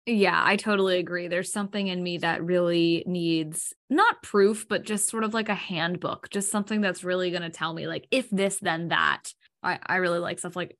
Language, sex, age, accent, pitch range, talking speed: English, female, 10-29, American, 170-190 Hz, 215 wpm